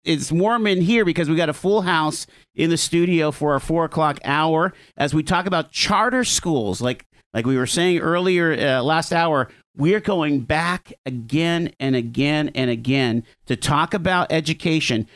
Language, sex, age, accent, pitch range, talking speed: English, male, 50-69, American, 130-175 Hz, 180 wpm